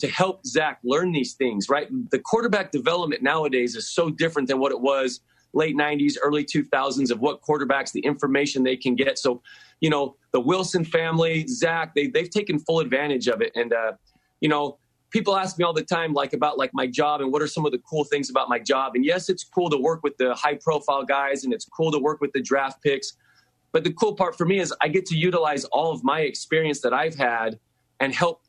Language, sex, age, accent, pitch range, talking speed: English, male, 30-49, American, 140-175 Hz, 230 wpm